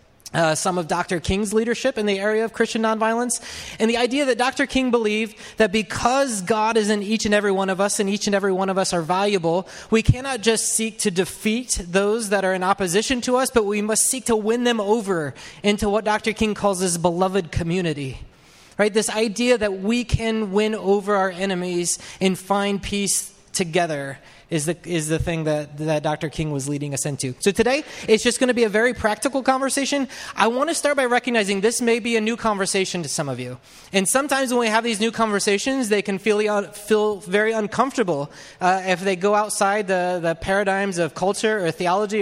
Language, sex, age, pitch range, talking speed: English, male, 20-39, 190-230 Hz, 210 wpm